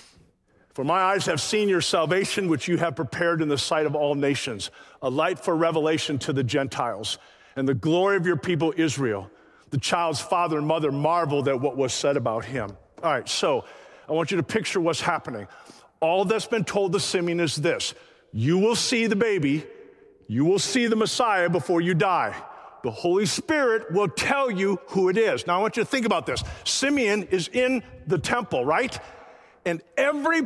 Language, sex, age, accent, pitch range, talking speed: English, male, 50-69, American, 140-215 Hz, 195 wpm